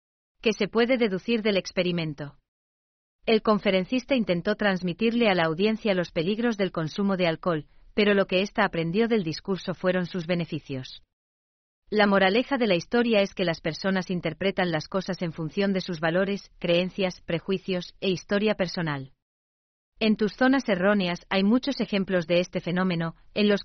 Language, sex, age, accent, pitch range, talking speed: German, female, 40-59, Spanish, 170-205 Hz, 160 wpm